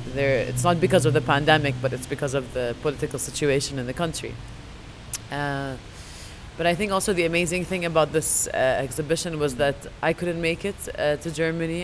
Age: 20-39